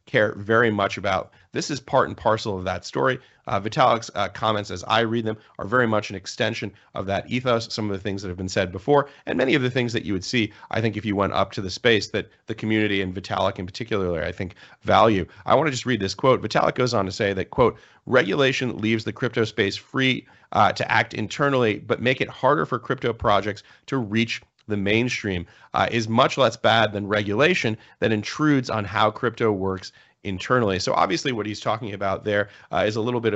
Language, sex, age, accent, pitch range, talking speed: English, male, 40-59, American, 95-115 Hz, 225 wpm